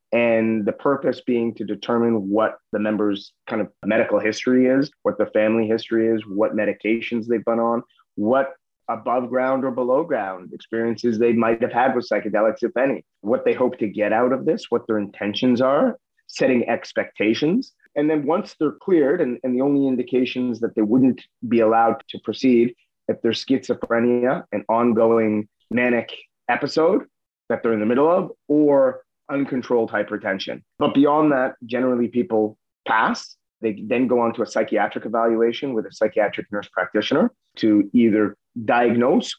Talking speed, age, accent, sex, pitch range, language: 165 wpm, 30-49, American, male, 110-130 Hz, English